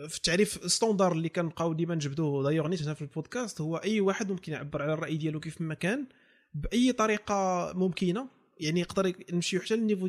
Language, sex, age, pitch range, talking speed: Arabic, male, 20-39, 150-190 Hz, 180 wpm